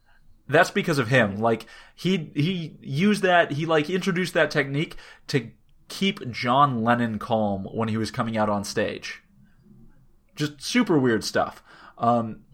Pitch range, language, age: 120-155 Hz, English, 30-49